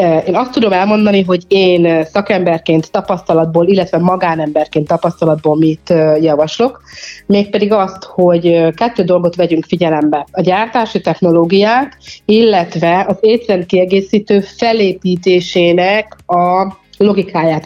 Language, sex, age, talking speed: Hungarian, female, 30-49, 100 wpm